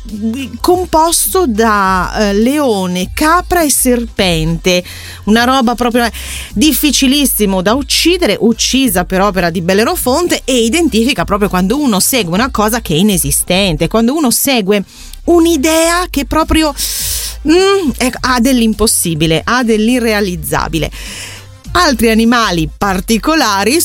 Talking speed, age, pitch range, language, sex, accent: 105 wpm, 30-49, 190-250 Hz, Italian, female, native